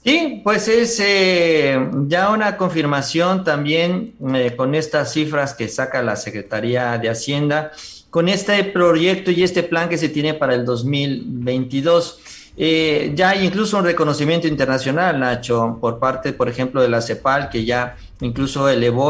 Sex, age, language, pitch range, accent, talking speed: male, 50-69, Spanish, 130-175 Hz, Mexican, 155 wpm